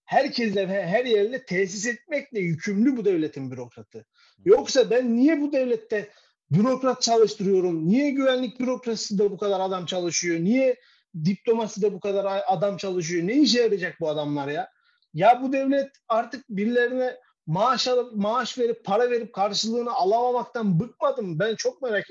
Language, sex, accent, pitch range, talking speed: Turkish, male, native, 185-255 Hz, 145 wpm